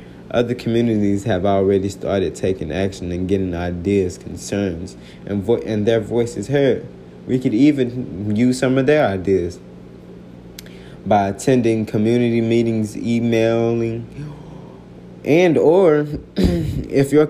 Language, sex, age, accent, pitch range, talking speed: English, male, 20-39, American, 95-125 Hz, 120 wpm